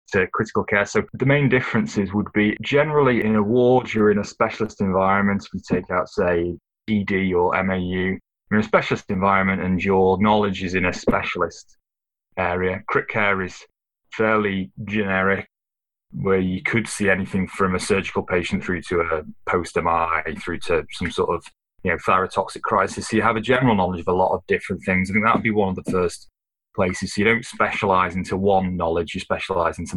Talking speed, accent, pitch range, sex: 190 wpm, British, 95-115 Hz, male